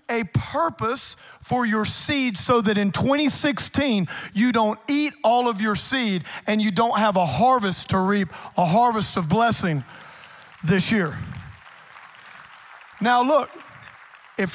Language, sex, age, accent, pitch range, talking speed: English, male, 40-59, American, 180-250 Hz, 135 wpm